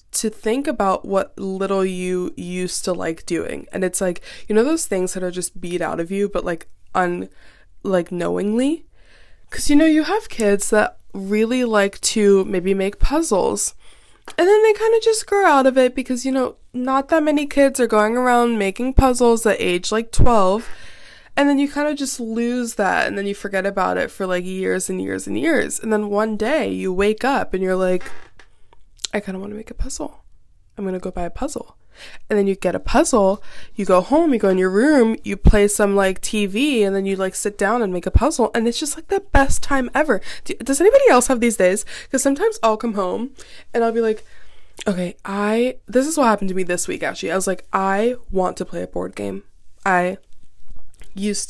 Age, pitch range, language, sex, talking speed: 20-39, 185-255 Hz, English, female, 220 wpm